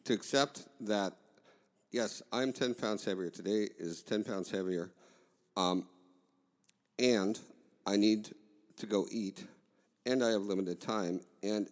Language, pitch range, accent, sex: English, 90-105 Hz, American, male